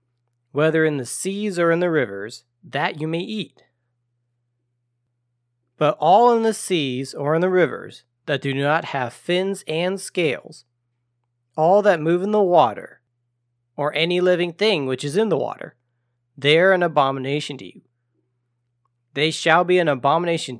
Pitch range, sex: 120-165 Hz, male